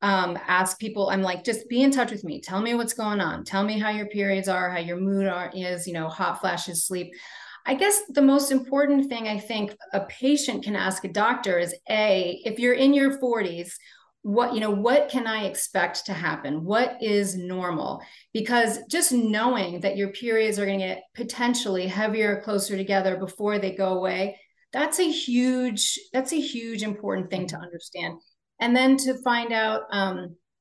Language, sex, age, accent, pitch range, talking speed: English, female, 30-49, American, 195-240 Hz, 190 wpm